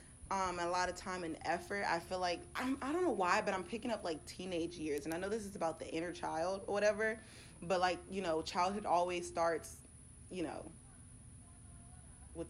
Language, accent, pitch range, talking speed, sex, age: English, American, 165-200 Hz, 205 wpm, female, 20-39